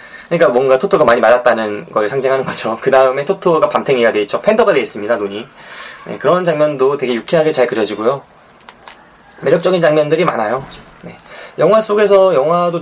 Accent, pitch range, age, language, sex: native, 125-195 Hz, 20-39, Korean, male